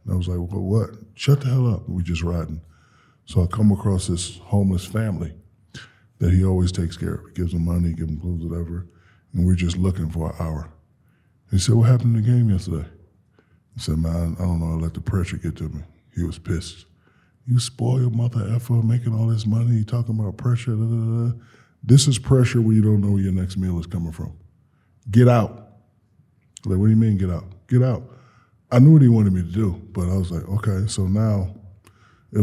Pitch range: 90-110 Hz